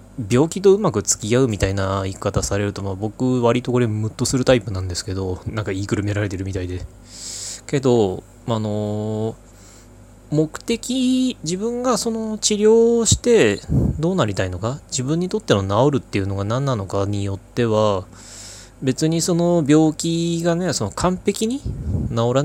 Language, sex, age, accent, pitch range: Japanese, male, 20-39, native, 100-135 Hz